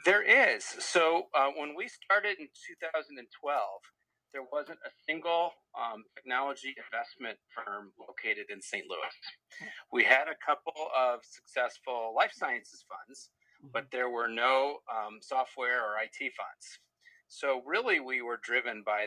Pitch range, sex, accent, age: 120-175 Hz, male, American, 40-59